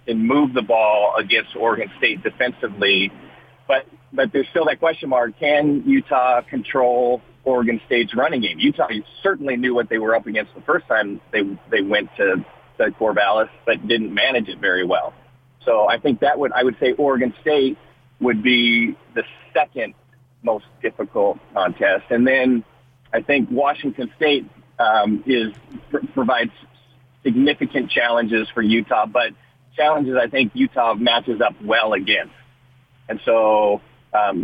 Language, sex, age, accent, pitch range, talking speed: English, male, 40-59, American, 110-130 Hz, 155 wpm